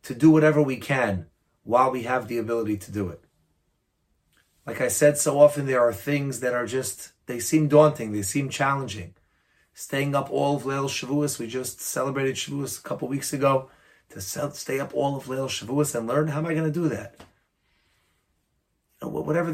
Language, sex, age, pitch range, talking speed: English, male, 30-49, 110-145 Hz, 190 wpm